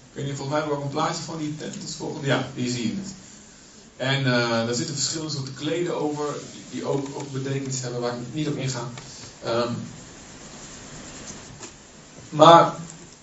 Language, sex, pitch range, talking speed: Dutch, male, 135-185 Hz, 170 wpm